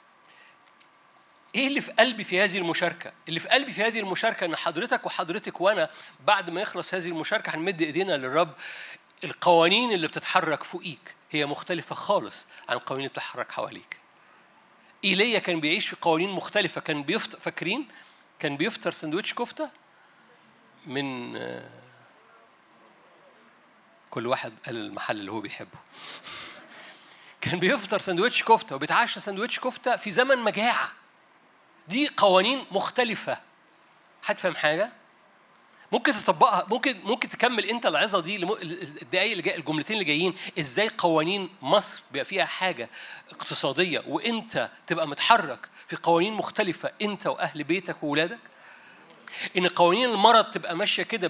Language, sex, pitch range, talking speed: Arabic, male, 170-225 Hz, 130 wpm